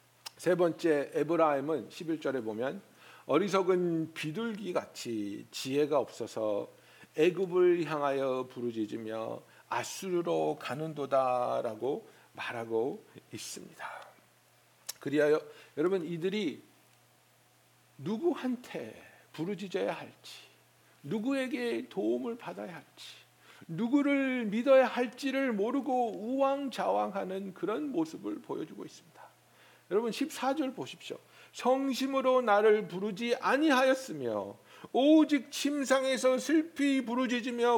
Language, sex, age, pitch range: Korean, male, 60-79, 205-280 Hz